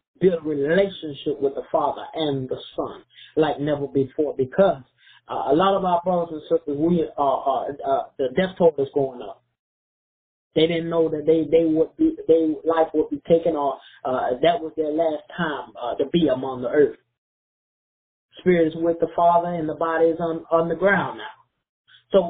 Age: 20-39